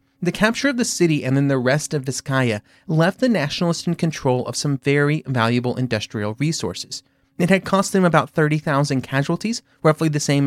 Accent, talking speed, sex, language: American, 185 wpm, male, English